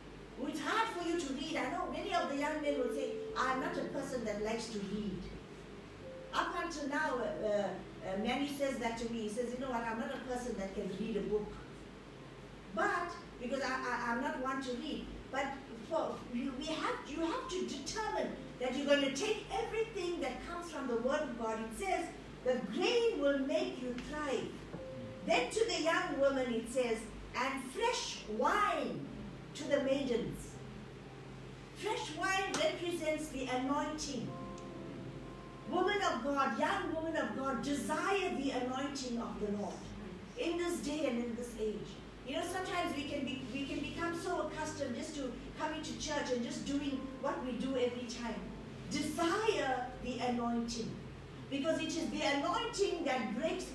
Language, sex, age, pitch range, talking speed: English, female, 50-69, 240-320 Hz, 175 wpm